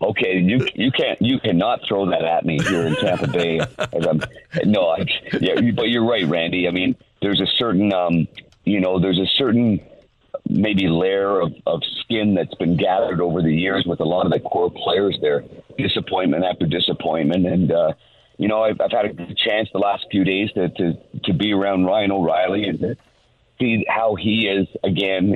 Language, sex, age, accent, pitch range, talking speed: English, male, 50-69, American, 85-105 Hz, 195 wpm